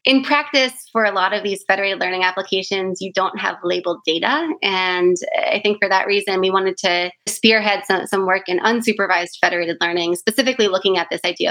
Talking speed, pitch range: 195 wpm, 190-230 Hz